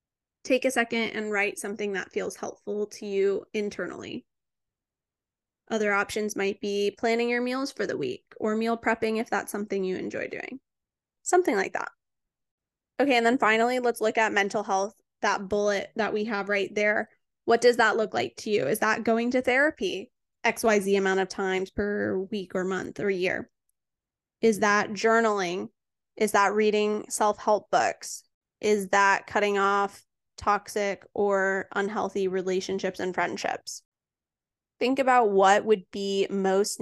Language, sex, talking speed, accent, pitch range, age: English, female, 155 wpm, American, 195-235 Hz, 10-29